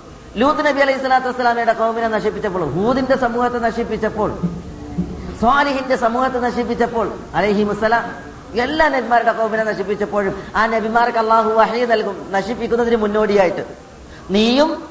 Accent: native